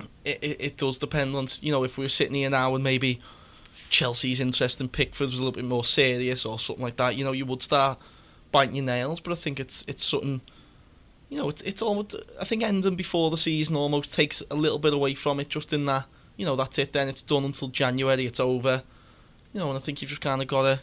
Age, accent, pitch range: 10-29, British, 125-145 Hz